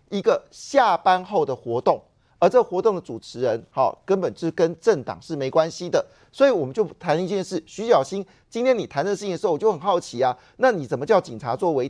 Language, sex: Chinese, male